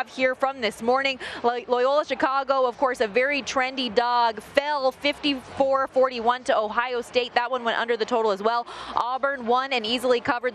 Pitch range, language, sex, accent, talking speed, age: 220-280 Hz, English, female, American, 170 wpm, 20-39